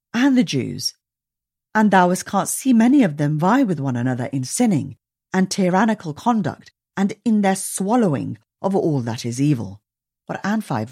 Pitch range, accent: 135-210 Hz, British